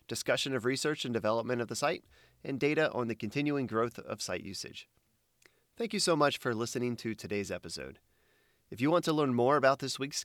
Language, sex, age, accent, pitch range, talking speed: English, male, 30-49, American, 120-175 Hz, 205 wpm